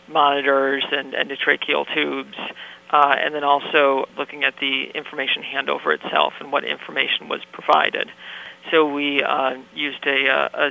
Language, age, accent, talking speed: English, 40-59, American, 145 wpm